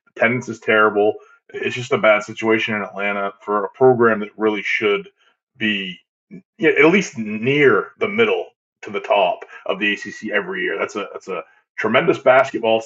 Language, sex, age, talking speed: English, male, 20-39, 170 wpm